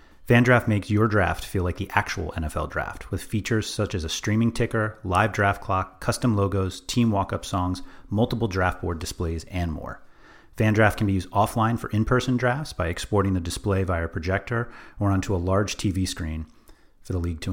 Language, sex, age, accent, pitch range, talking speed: English, male, 30-49, American, 95-115 Hz, 190 wpm